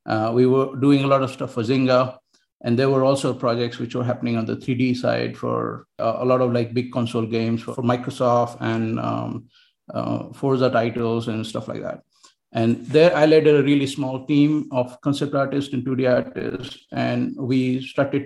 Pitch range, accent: 120-135 Hz, Indian